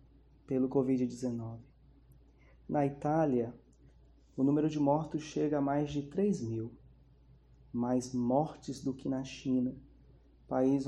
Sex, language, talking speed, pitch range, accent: male, Portuguese, 115 wpm, 125-145 Hz, Brazilian